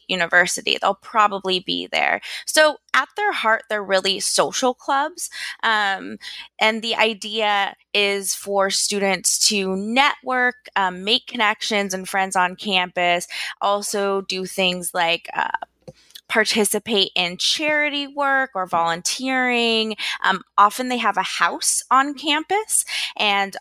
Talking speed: 125 wpm